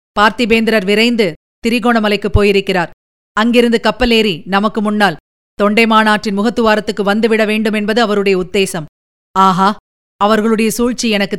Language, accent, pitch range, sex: Tamil, native, 210-275 Hz, female